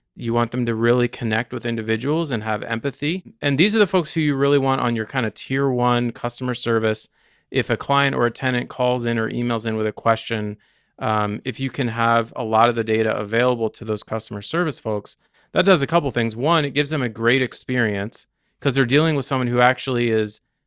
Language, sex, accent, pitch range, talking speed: English, male, American, 110-140 Hz, 230 wpm